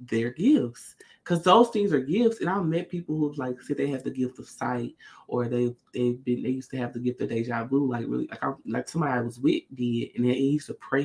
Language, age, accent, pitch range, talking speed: English, 20-39, American, 125-170 Hz, 260 wpm